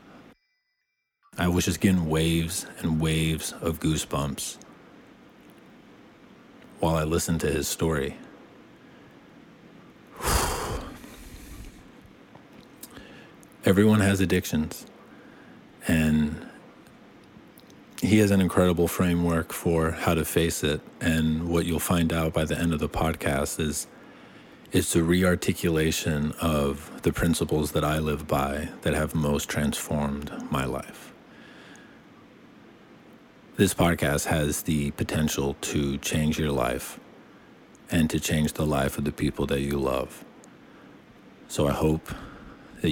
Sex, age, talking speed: male, 40-59, 115 wpm